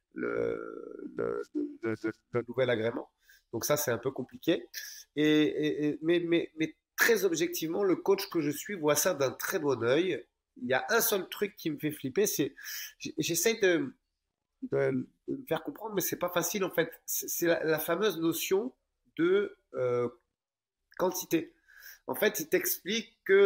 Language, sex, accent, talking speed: French, male, French, 155 wpm